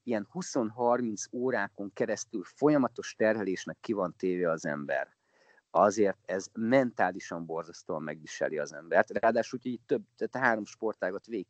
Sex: male